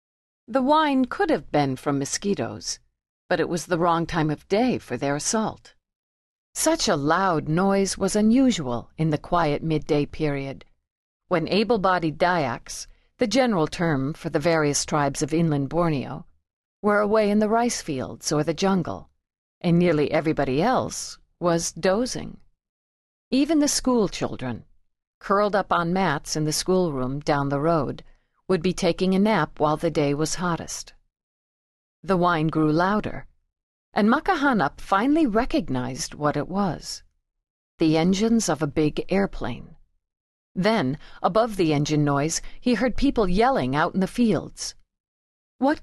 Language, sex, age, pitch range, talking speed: English, female, 50-69, 145-215 Hz, 145 wpm